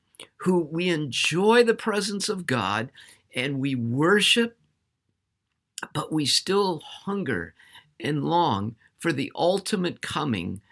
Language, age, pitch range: English, 50-69, 110-170 Hz